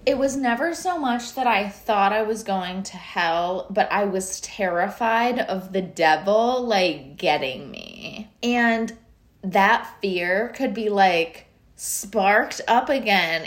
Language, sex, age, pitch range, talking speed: English, female, 20-39, 185-235 Hz, 145 wpm